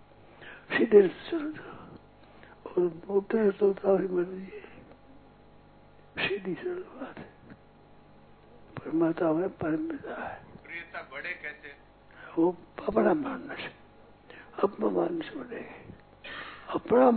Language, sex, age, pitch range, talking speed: Hindi, male, 60-79, 200-255 Hz, 50 wpm